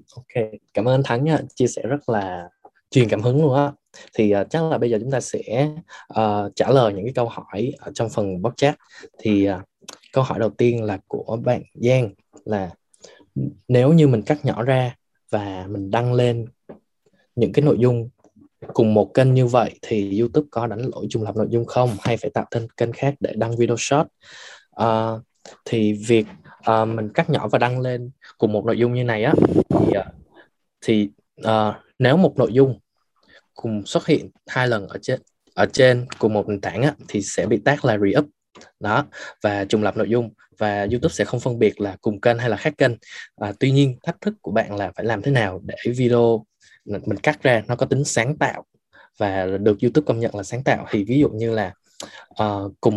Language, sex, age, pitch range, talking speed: Vietnamese, male, 20-39, 105-130 Hz, 210 wpm